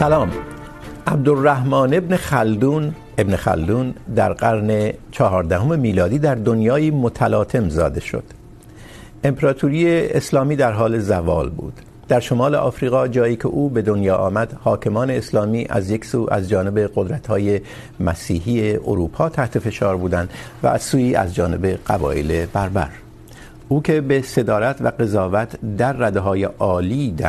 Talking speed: 130 wpm